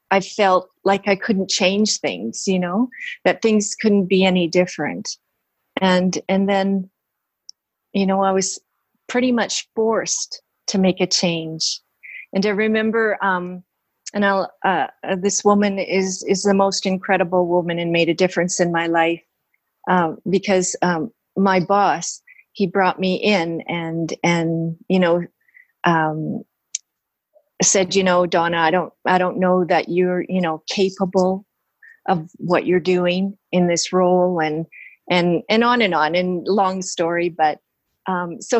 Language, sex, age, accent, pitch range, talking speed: English, female, 40-59, American, 175-210 Hz, 155 wpm